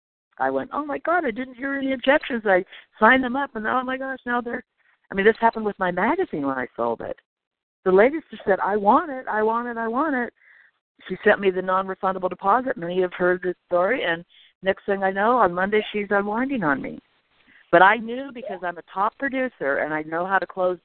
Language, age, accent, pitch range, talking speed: English, 60-79, American, 165-240 Hz, 235 wpm